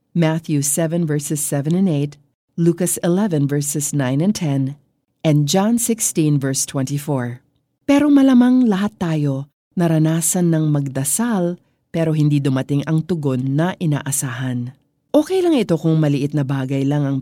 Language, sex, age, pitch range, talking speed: Filipino, female, 40-59, 145-180 Hz, 145 wpm